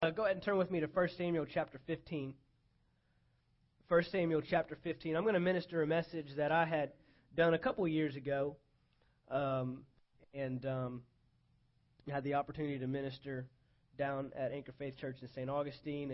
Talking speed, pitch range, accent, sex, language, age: 170 wpm, 140-190 Hz, American, male, English, 30-49